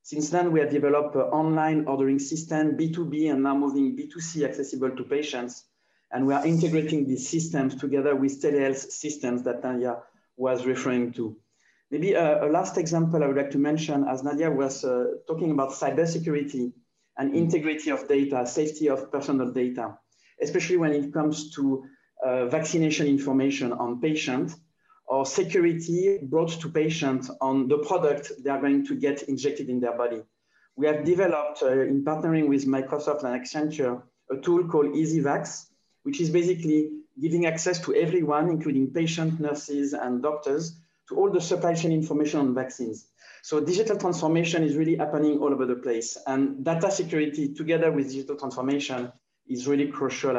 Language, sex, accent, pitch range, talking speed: English, male, French, 135-160 Hz, 165 wpm